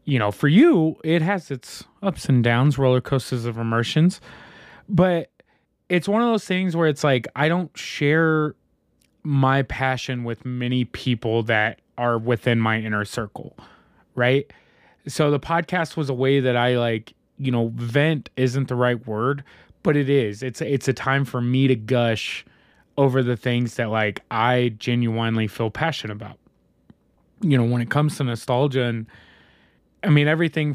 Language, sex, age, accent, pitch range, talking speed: English, male, 20-39, American, 120-170 Hz, 170 wpm